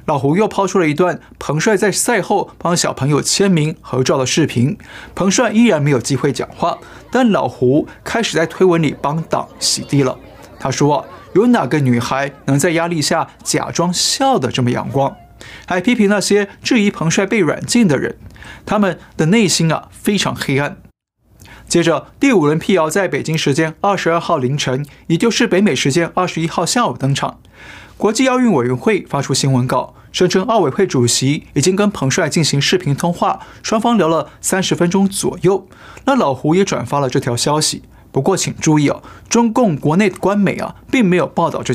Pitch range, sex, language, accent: 135-195 Hz, male, Chinese, native